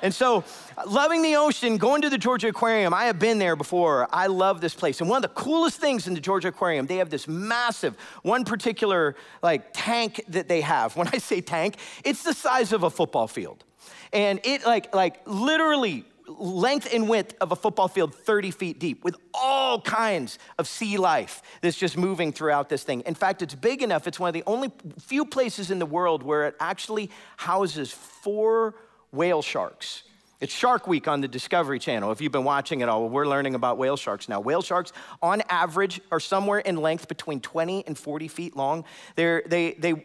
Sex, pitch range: male, 160-230 Hz